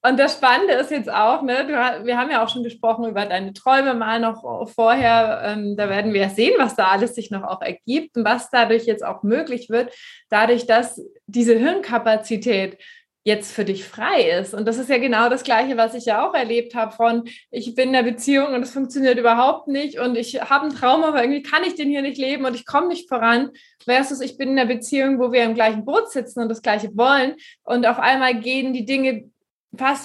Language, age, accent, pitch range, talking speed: German, 20-39, German, 225-265 Hz, 225 wpm